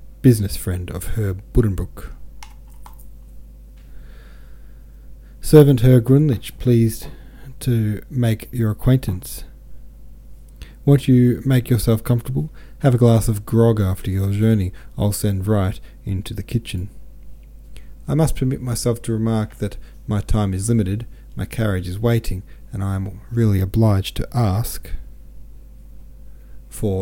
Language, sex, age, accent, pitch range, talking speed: English, male, 40-59, Australian, 85-115 Hz, 120 wpm